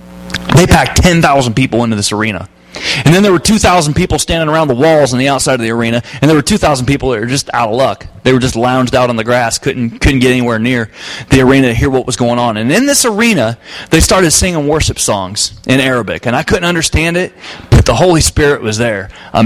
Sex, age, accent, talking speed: male, 30-49, American, 240 wpm